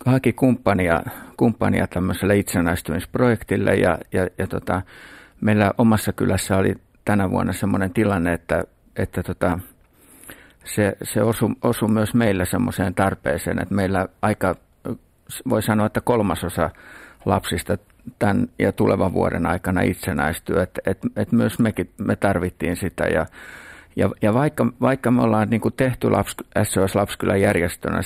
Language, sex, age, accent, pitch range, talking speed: Finnish, male, 60-79, native, 90-110 Hz, 135 wpm